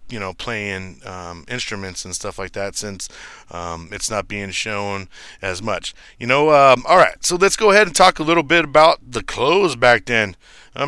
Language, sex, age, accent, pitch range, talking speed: English, male, 30-49, American, 100-130 Hz, 200 wpm